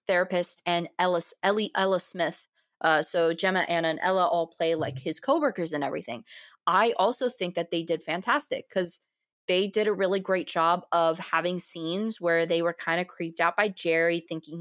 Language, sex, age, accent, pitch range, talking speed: English, female, 20-39, American, 165-195 Hz, 190 wpm